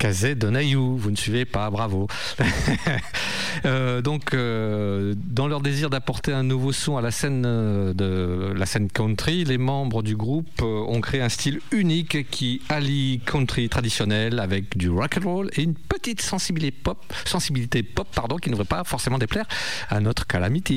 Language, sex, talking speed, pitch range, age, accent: French, male, 175 wpm, 110-145 Hz, 50-69, French